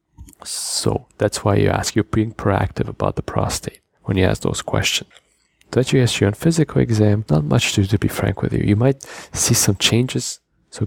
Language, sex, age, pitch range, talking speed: English, male, 30-49, 95-115 Hz, 210 wpm